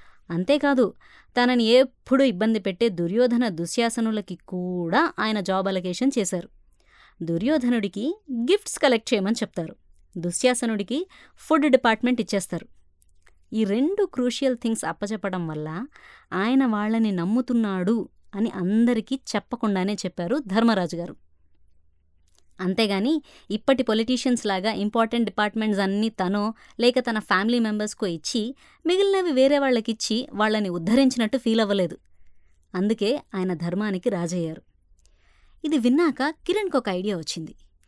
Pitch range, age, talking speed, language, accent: 185-250 Hz, 20-39, 100 wpm, Telugu, native